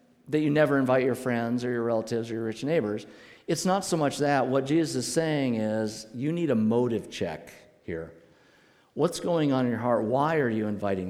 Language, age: English, 50-69